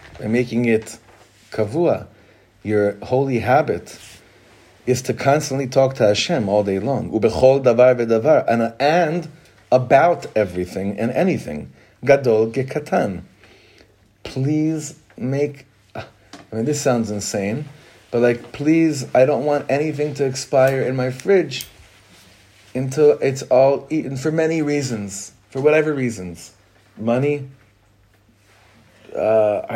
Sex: male